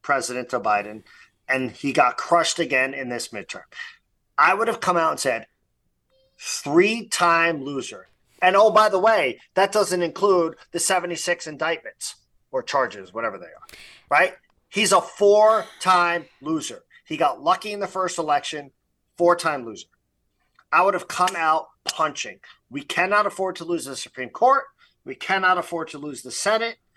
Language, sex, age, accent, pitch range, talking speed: English, male, 40-59, American, 130-190 Hz, 165 wpm